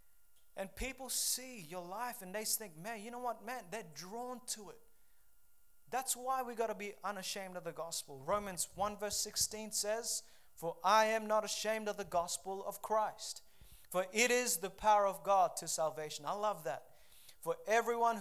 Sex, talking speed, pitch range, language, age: male, 185 wpm, 200-235 Hz, English, 30-49